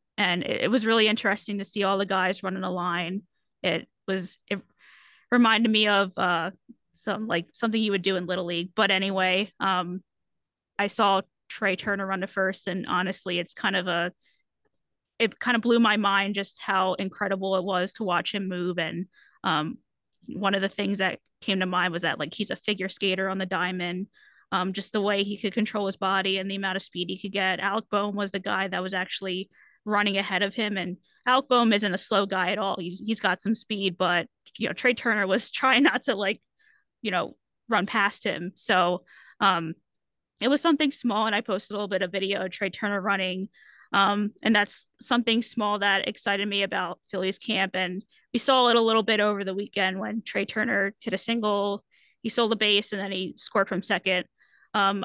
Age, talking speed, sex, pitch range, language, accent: 20-39, 210 wpm, female, 190-215 Hz, English, American